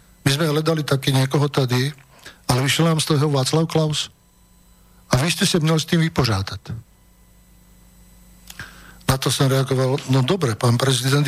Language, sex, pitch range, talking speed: Slovak, male, 125-150 Hz, 155 wpm